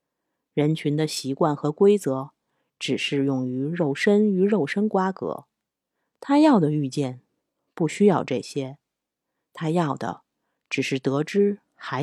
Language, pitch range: Chinese, 145-210 Hz